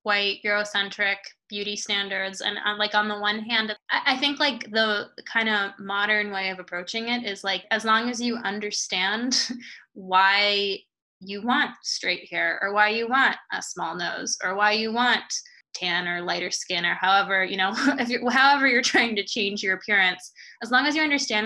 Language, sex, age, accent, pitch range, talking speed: English, female, 20-39, American, 195-240 Hz, 190 wpm